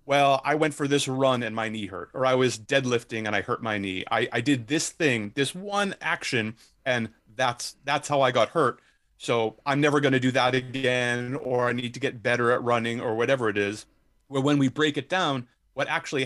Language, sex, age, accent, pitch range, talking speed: English, male, 30-49, American, 120-150 Hz, 235 wpm